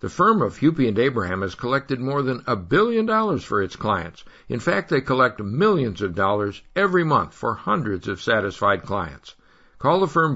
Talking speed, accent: 190 wpm, American